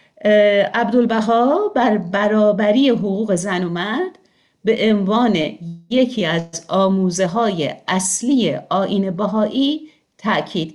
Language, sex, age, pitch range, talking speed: Persian, female, 50-69, 185-255 Hz, 90 wpm